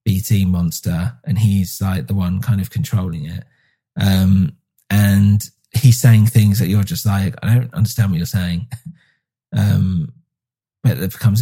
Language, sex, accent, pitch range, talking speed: English, male, British, 95-120 Hz, 160 wpm